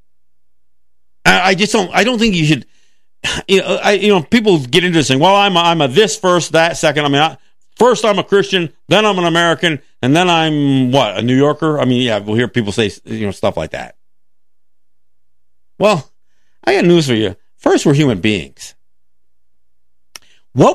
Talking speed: 195 wpm